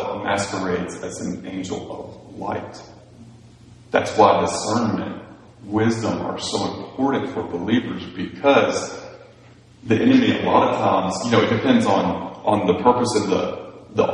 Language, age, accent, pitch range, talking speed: English, 30-49, American, 95-115 Hz, 135 wpm